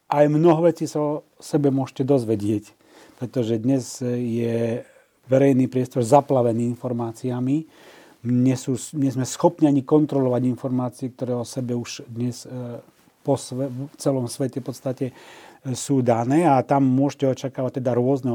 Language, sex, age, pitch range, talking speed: Slovak, male, 40-59, 120-140 Hz, 135 wpm